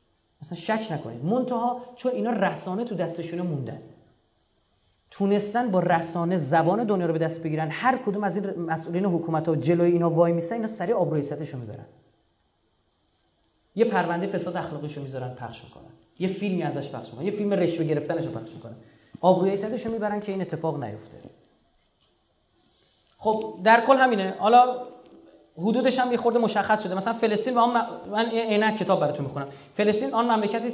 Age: 30-49